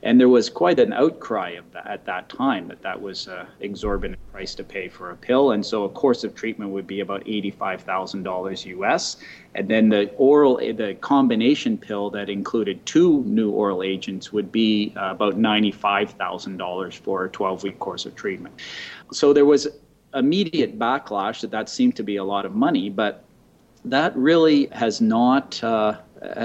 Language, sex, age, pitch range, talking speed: English, male, 30-49, 105-145 Hz, 185 wpm